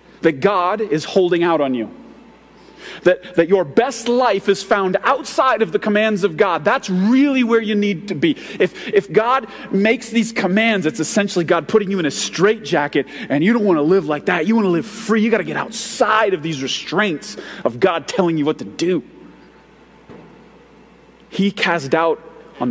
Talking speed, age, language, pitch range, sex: 195 wpm, 30-49, English, 170-225 Hz, male